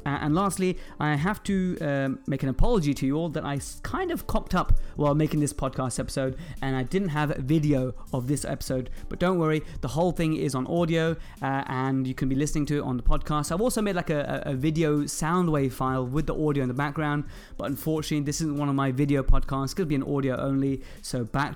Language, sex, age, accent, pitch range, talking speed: English, male, 20-39, British, 135-165 Hz, 235 wpm